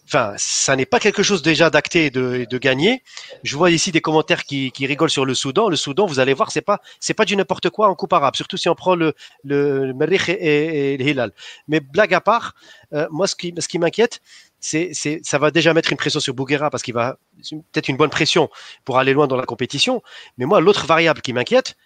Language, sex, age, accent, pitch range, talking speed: French, male, 30-49, French, 140-190 Hz, 240 wpm